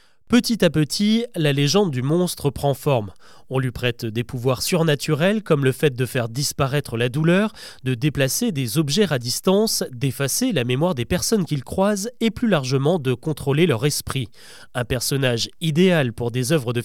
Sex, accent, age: male, French, 30-49